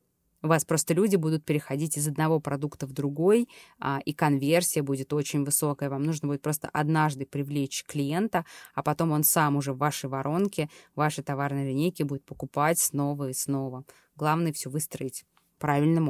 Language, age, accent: Russian, 20-39, native